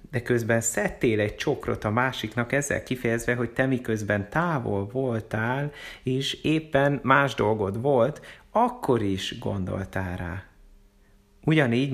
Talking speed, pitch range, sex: 120 wpm, 105-130 Hz, male